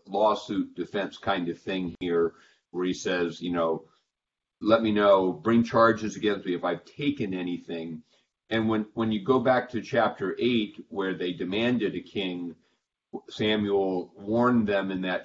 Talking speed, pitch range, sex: 160 wpm, 90-110 Hz, male